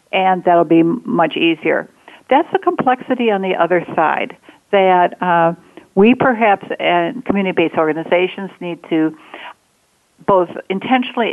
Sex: female